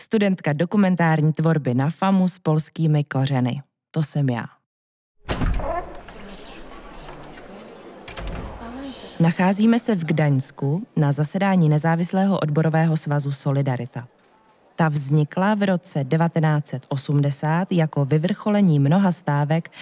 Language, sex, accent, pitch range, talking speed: Czech, female, native, 150-195 Hz, 90 wpm